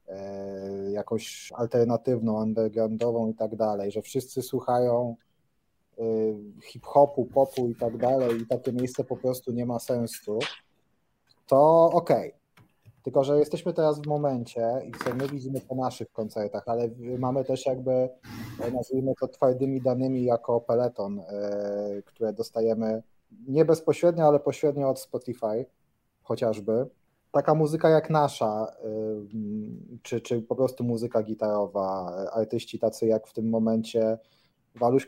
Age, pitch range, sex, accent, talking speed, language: 30-49, 110-135 Hz, male, native, 125 wpm, Polish